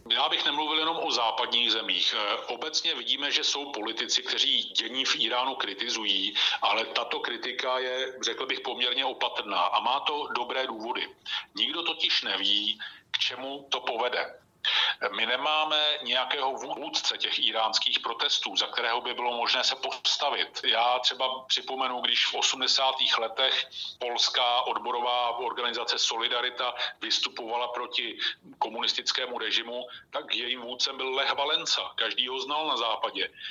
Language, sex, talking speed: Slovak, male, 140 wpm